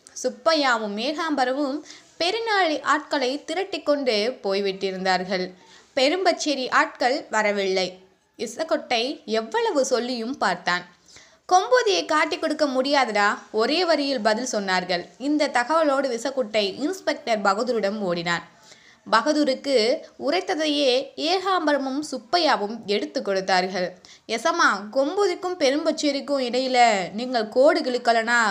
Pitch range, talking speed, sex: 210-295 Hz, 85 wpm, female